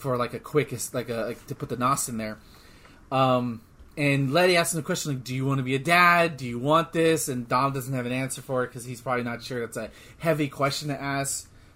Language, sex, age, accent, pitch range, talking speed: English, male, 30-49, American, 130-205 Hz, 260 wpm